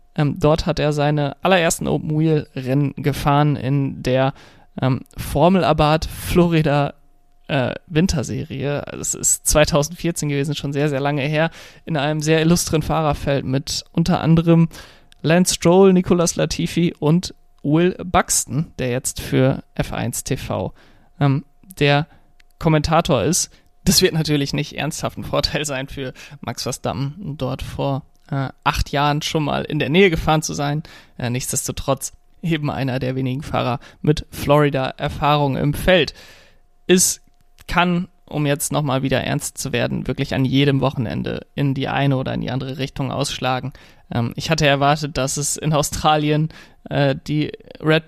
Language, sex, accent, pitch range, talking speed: German, male, German, 135-155 Hz, 140 wpm